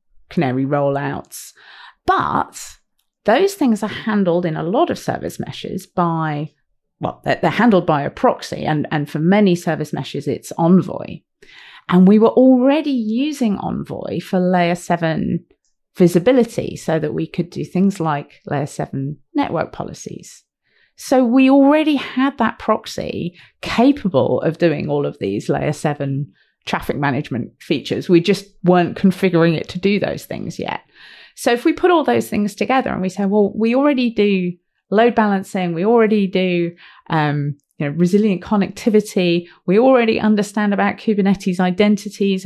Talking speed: 150 wpm